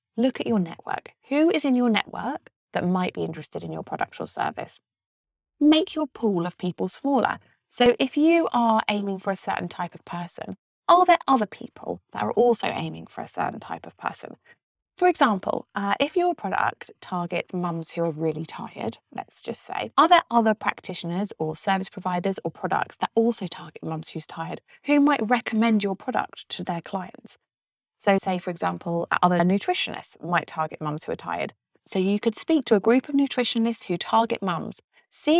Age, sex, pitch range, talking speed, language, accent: 30-49, female, 180-265 Hz, 190 wpm, English, British